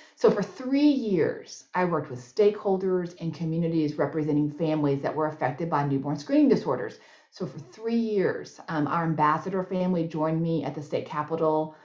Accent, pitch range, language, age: American, 150-200 Hz, English, 40-59